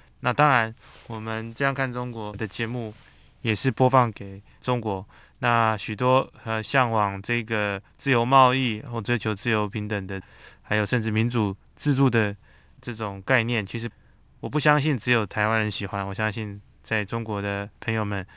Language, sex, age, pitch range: Chinese, male, 20-39, 105-120 Hz